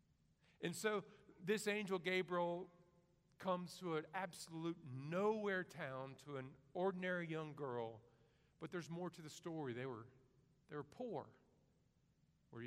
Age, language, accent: 50-69, English, American